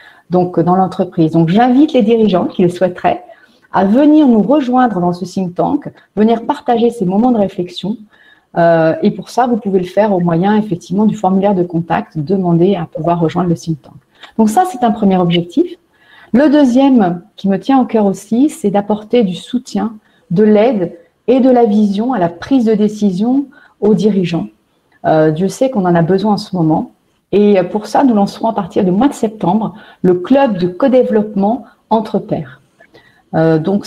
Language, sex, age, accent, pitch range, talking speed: French, female, 40-59, French, 175-230 Hz, 190 wpm